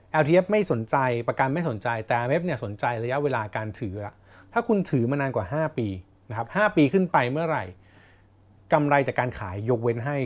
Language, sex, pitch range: Thai, male, 100-140 Hz